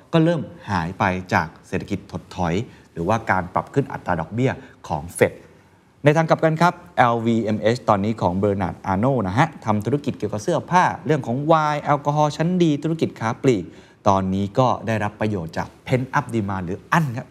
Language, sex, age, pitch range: Thai, male, 20-39, 95-140 Hz